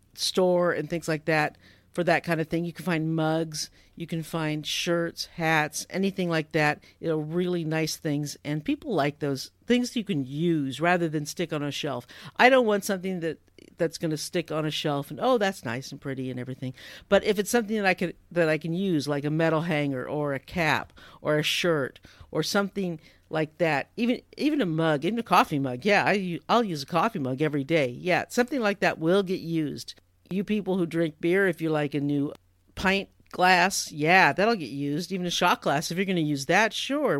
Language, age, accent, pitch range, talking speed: English, 50-69, American, 150-195 Hz, 220 wpm